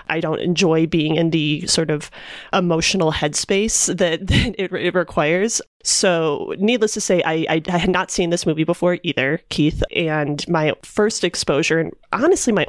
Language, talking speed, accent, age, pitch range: English, 175 wpm, American, 30-49, 155-190 Hz